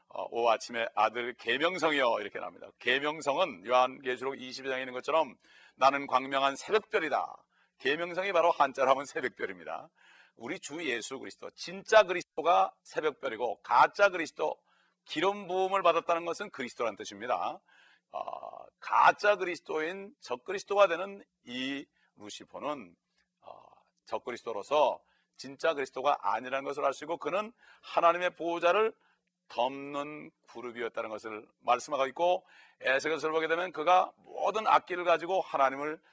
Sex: male